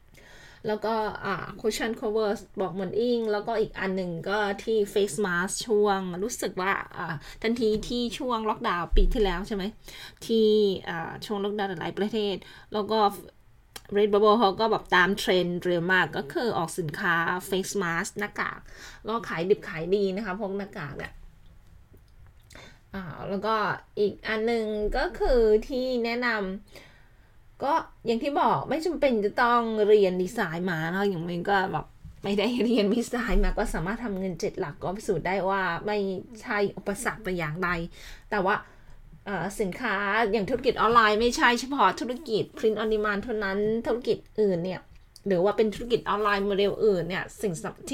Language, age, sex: Thai, 20-39, female